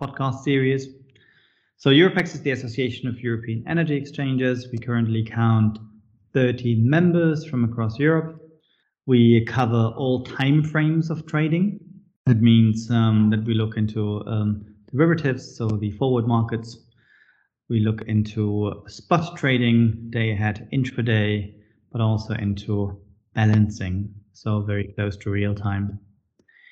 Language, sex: English, male